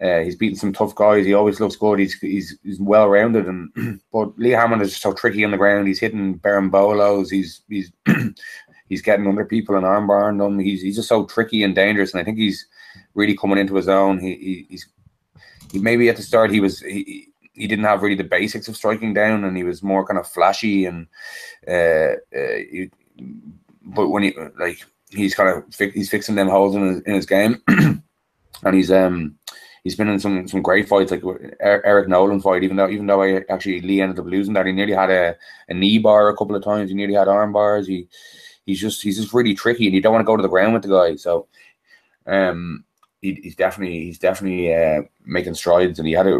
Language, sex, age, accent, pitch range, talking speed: English, male, 20-39, Irish, 95-105 Hz, 230 wpm